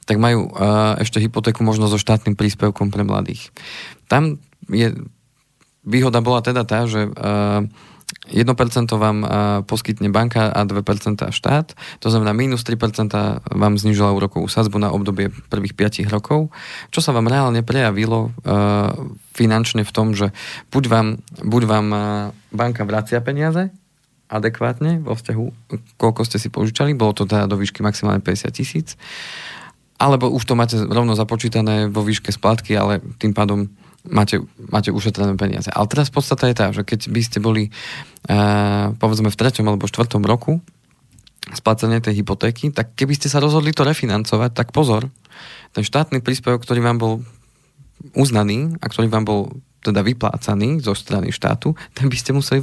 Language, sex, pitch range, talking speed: Slovak, male, 105-125 Hz, 155 wpm